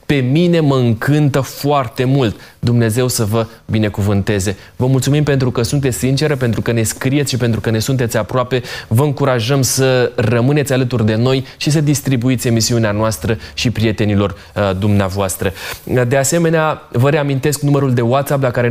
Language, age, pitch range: Romanian, 20-39, 115-140 Hz